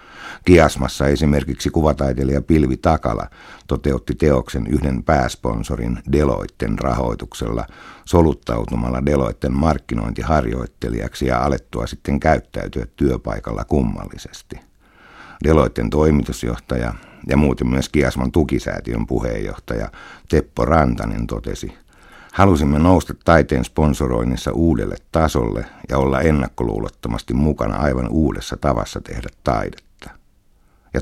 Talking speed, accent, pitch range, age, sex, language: 90 wpm, native, 65-80 Hz, 60-79, male, Finnish